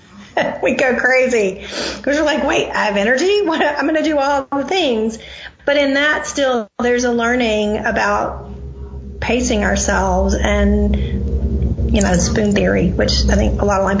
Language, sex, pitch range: English, female, 195-250 Hz